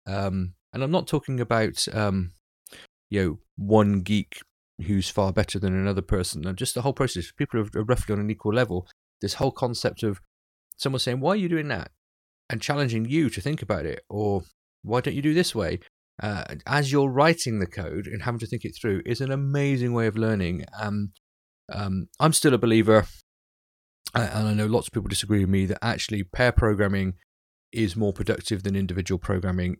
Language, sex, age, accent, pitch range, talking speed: English, male, 30-49, British, 95-115 Hz, 195 wpm